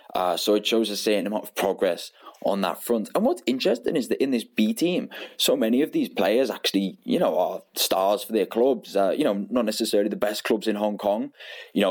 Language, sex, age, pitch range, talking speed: English, male, 20-39, 100-120 Hz, 235 wpm